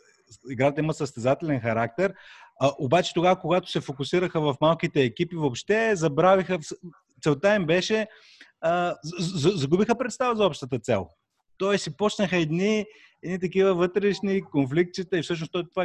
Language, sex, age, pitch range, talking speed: Bulgarian, male, 30-49, 130-170 Hz, 130 wpm